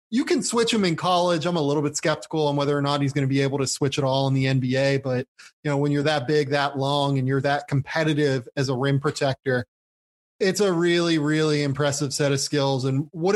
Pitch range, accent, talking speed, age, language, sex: 140-175 Hz, American, 245 wpm, 20-39, English, male